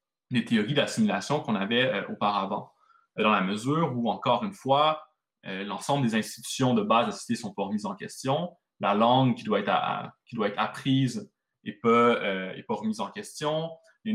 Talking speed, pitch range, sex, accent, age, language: 210 wpm, 115-185 Hz, male, French, 20-39, French